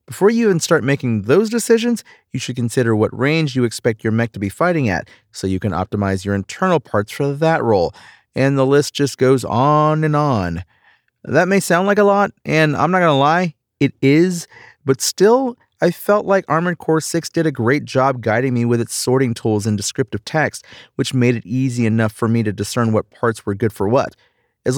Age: 30-49